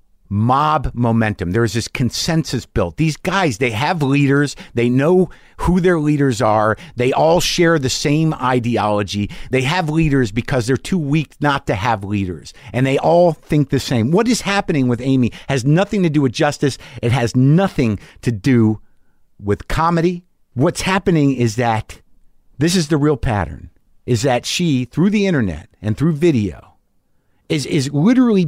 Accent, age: American, 50-69